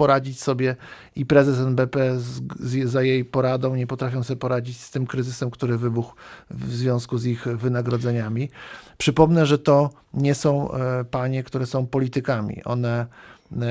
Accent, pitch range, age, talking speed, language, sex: native, 120-140 Hz, 50-69, 155 wpm, Polish, male